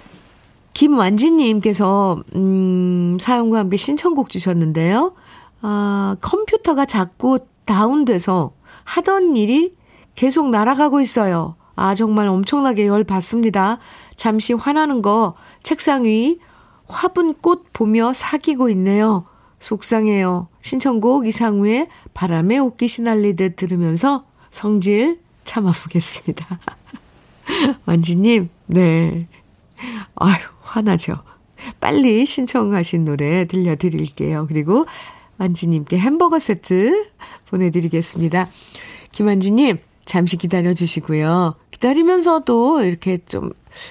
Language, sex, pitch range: Korean, female, 180-265 Hz